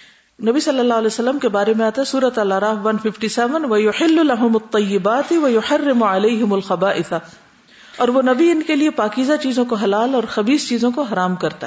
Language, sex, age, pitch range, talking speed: Urdu, female, 50-69, 190-240 Hz, 155 wpm